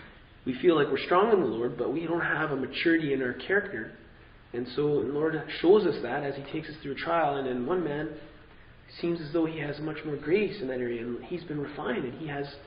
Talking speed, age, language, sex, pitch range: 250 wpm, 20-39, English, male, 145-215 Hz